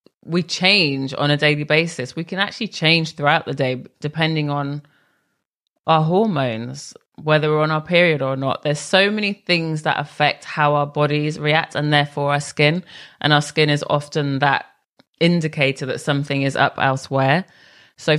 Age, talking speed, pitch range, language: 20-39, 170 wpm, 145-165 Hz, English